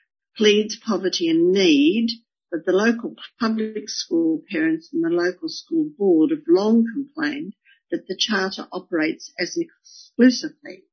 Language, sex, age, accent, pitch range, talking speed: English, female, 60-79, Australian, 200-325 Hz, 135 wpm